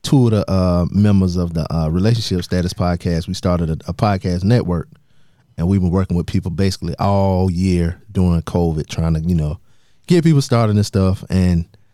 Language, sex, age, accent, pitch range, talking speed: English, male, 30-49, American, 85-105 Hz, 190 wpm